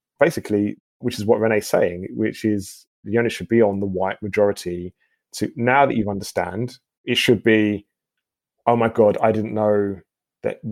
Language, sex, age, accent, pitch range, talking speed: English, male, 30-49, British, 100-115 Hz, 175 wpm